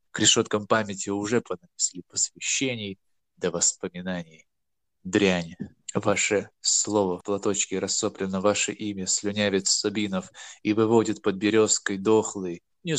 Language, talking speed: Russian, 115 wpm